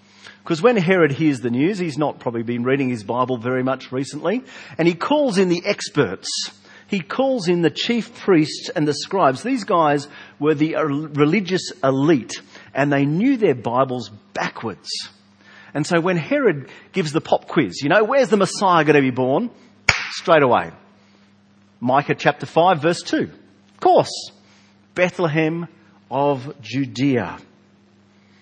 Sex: male